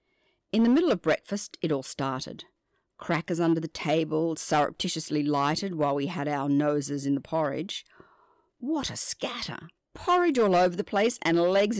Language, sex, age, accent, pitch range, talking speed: English, female, 50-69, Australian, 140-205 Hz, 165 wpm